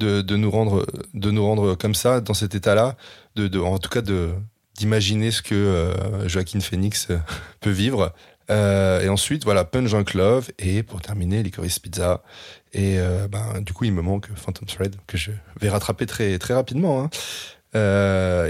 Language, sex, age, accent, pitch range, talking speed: French, male, 30-49, French, 95-110 Hz, 190 wpm